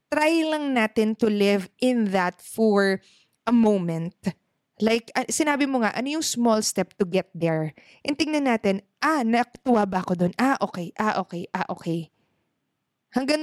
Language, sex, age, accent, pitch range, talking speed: Filipino, female, 20-39, native, 190-255 Hz, 175 wpm